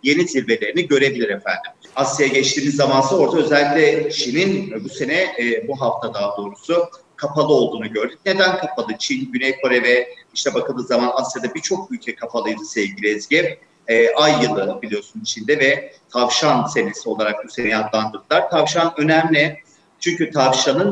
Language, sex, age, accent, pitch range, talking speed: Turkish, male, 40-59, native, 135-185 Hz, 145 wpm